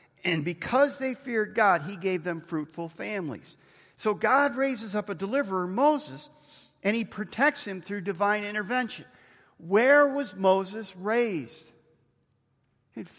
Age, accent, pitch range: 50-69, American, 180-260 Hz